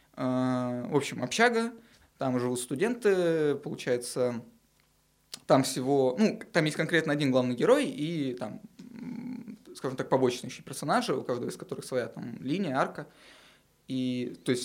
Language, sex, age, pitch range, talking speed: Russian, male, 20-39, 130-180 Hz, 140 wpm